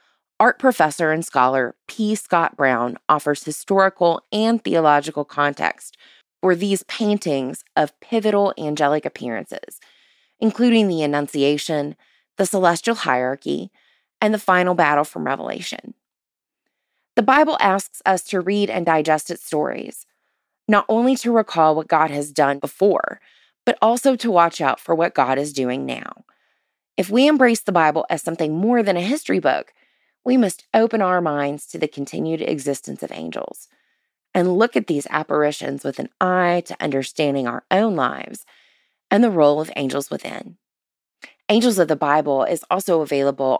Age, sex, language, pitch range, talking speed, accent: 20-39, female, English, 145-205 Hz, 150 wpm, American